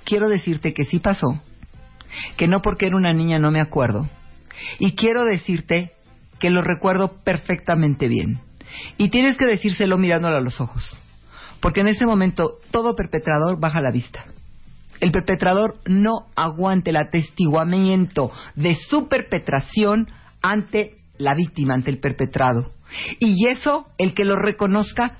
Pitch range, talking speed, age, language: 155-220 Hz, 145 wpm, 50-69, Spanish